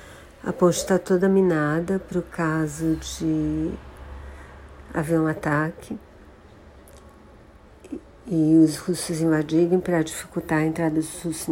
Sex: female